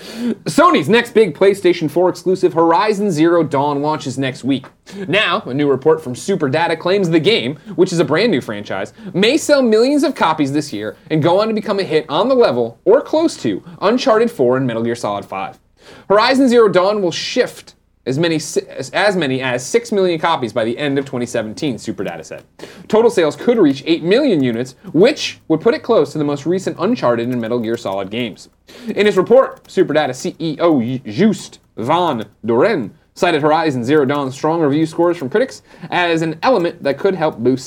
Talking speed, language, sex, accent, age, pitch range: 190 wpm, English, male, American, 30-49, 130-190 Hz